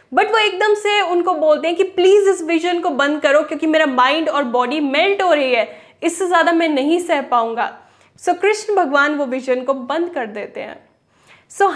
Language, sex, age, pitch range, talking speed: Hindi, female, 10-29, 280-360 Hz, 210 wpm